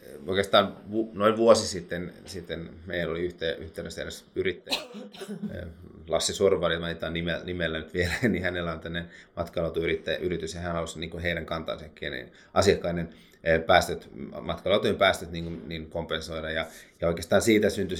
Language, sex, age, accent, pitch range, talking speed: Finnish, male, 30-49, native, 85-95 Hz, 125 wpm